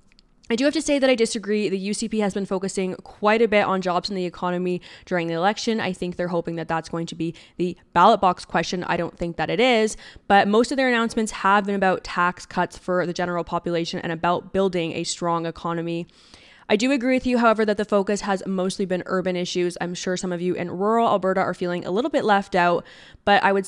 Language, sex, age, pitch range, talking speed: English, female, 20-39, 175-210 Hz, 245 wpm